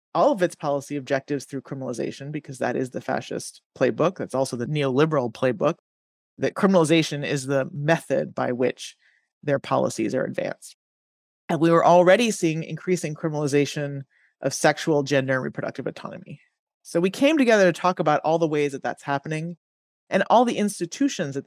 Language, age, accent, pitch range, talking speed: English, 30-49, American, 140-170 Hz, 170 wpm